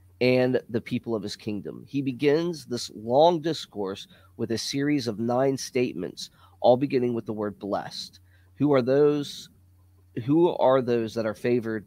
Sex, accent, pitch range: male, American, 105-135 Hz